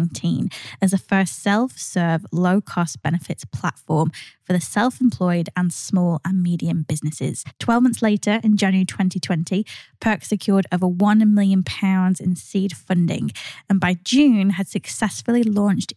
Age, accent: 20-39, British